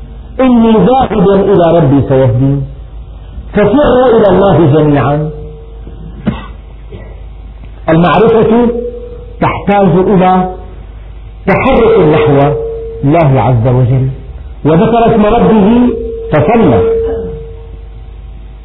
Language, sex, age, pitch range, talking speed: Arabic, male, 50-69, 130-210 Hz, 70 wpm